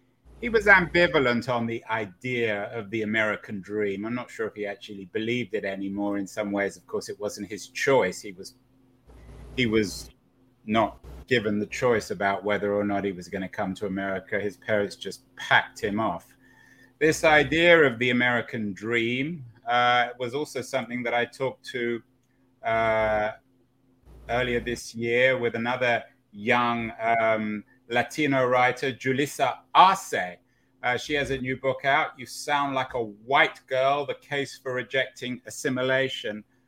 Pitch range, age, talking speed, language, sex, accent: 105-130 Hz, 30-49, 160 wpm, English, male, British